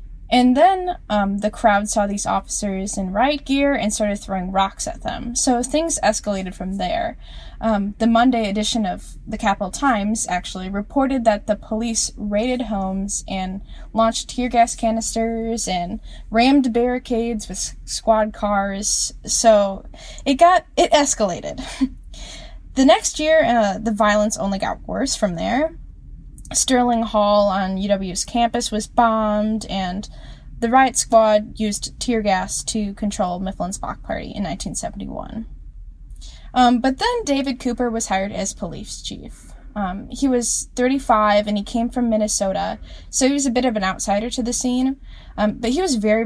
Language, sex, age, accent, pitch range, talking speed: English, female, 10-29, American, 200-245 Hz, 155 wpm